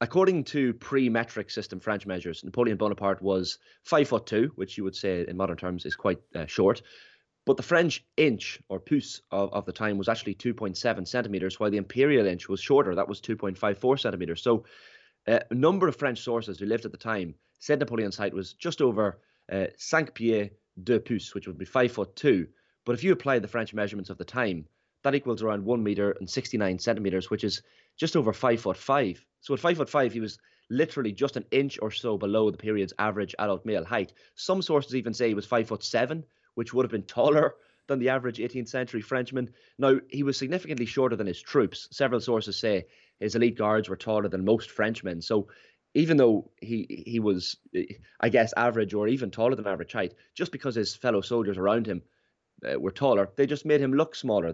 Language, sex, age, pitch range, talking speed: English, male, 30-49, 100-125 Hz, 210 wpm